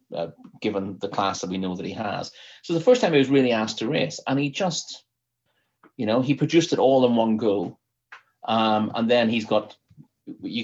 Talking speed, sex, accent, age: 215 wpm, male, British, 30-49